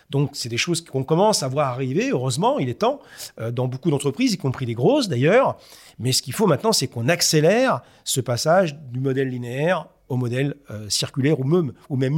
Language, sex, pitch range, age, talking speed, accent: French, male, 130-170 Hz, 40-59, 205 wpm, French